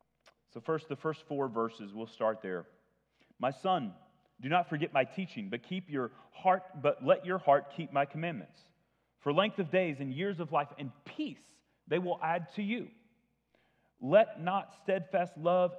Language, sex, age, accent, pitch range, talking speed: English, male, 40-59, American, 130-175 Hz, 175 wpm